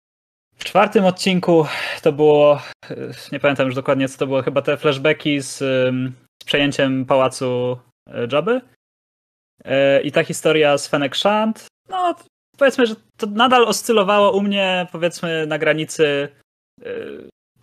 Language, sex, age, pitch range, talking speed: Polish, male, 20-39, 135-170 Hz, 135 wpm